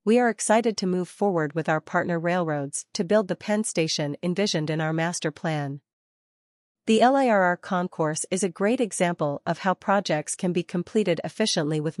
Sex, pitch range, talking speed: female, 160-200 Hz, 175 wpm